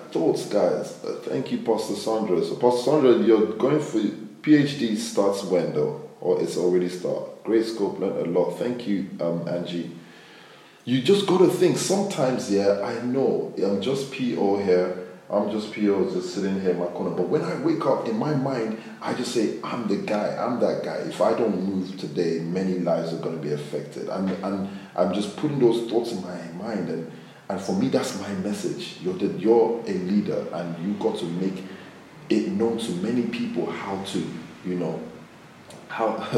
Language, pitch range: English, 90-115 Hz